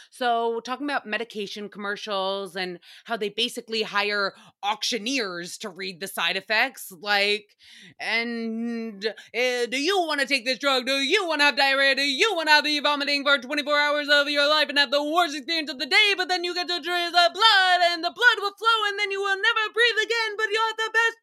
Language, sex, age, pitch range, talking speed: English, female, 20-39, 225-360 Hz, 215 wpm